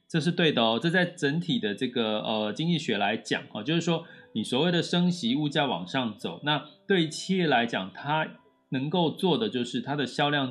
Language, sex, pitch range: Chinese, male, 115-175 Hz